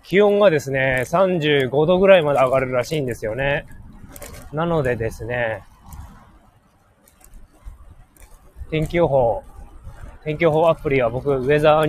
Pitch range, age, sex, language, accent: 110-150 Hz, 20-39, male, Japanese, native